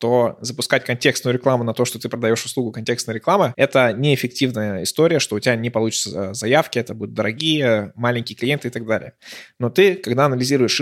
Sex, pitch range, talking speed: male, 115-135 Hz, 185 wpm